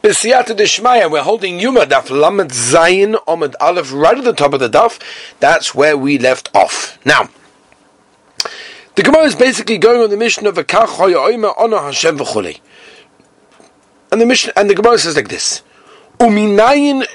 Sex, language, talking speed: male, English, 170 wpm